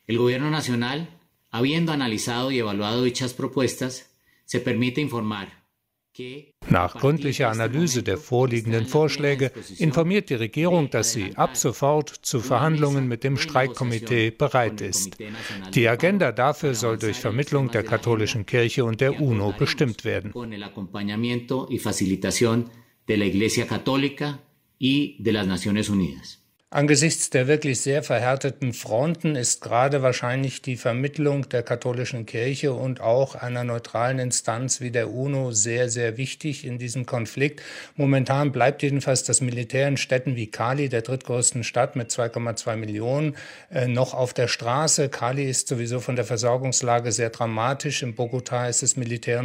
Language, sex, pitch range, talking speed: German, male, 115-140 Hz, 120 wpm